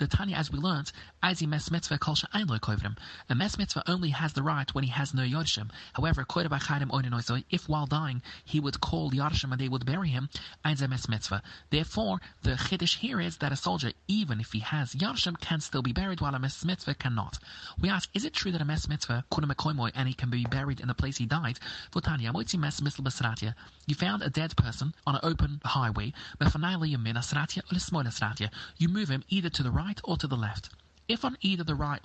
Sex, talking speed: male, 215 wpm